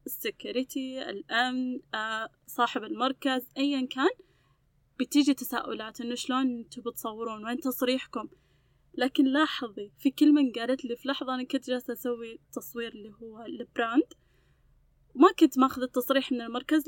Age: 20-39